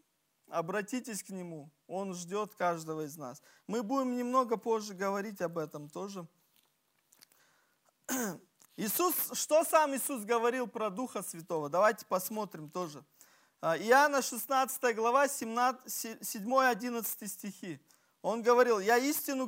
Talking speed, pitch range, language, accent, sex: 110 wpm, 190-255 Hz, Russian, native, male